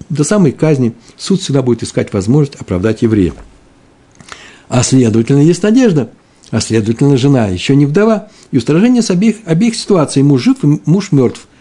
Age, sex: 60-79, male